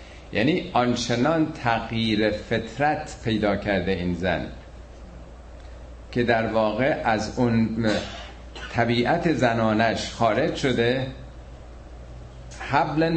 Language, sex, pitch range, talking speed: Persian, male, 95-120 Hz, 80 wpm